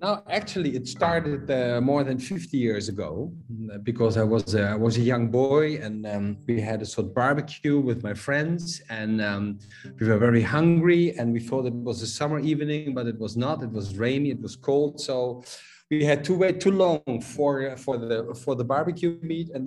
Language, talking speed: Greek, 210 wpm